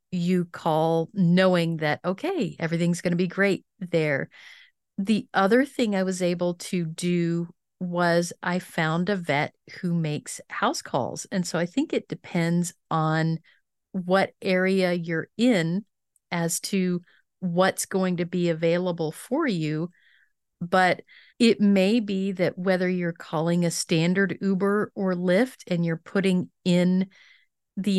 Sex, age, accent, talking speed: female, 40-59, American, 140 wpm